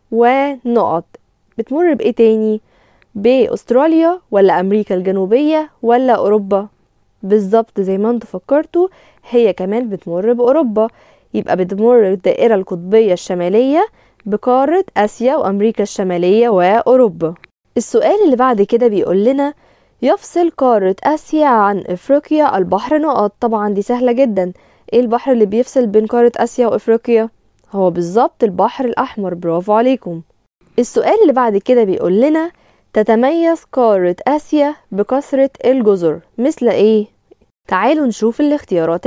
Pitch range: 205-275 Hz